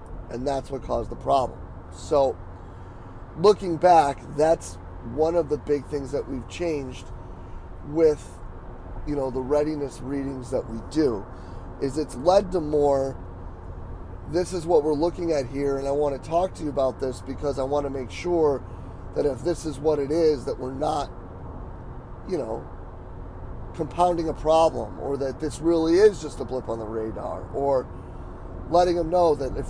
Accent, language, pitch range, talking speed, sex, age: American, English, 110-155 Hz, 175 wpm, male, 30-49